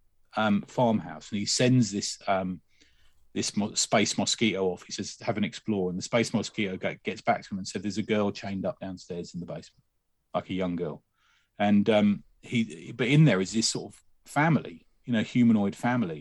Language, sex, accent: English, male, British